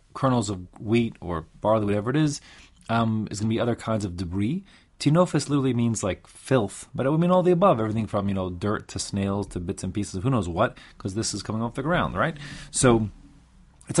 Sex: male